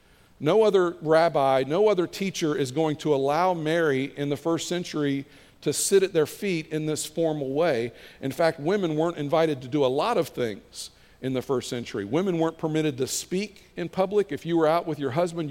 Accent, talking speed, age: American, 205 wpm, 50-69